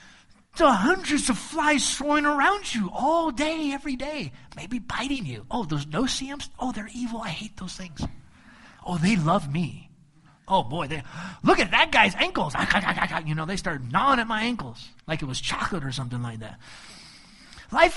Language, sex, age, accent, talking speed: English, male, 30-49, American, 180 wpm